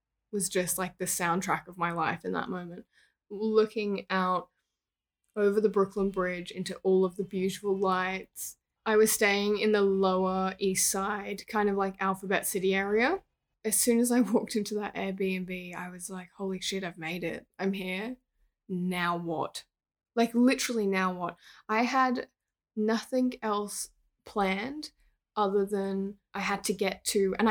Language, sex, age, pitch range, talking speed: English, female, 10-29, 185-215 Hz, 160 wpm